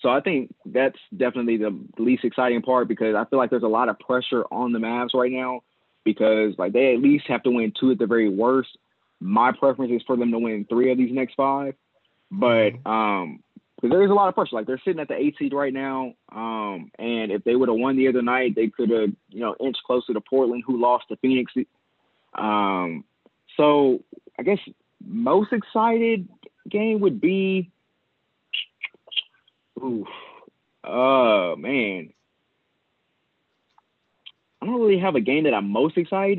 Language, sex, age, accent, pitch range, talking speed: English, male, 20-39, American, 120-185 Hz, 180 wpm